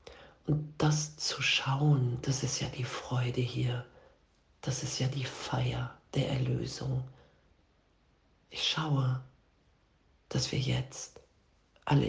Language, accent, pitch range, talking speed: German, German, 120-145 Hz, 115 wpm